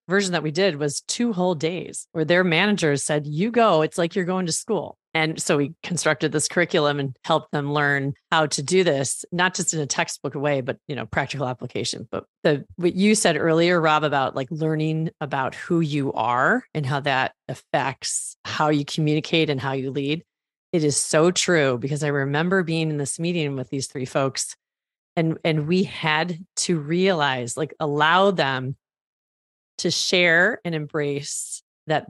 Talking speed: 185 wpm